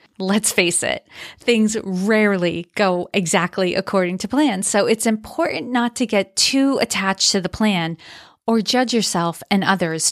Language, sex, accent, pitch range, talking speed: English, female, American, 185-240 Hz, 155 wpm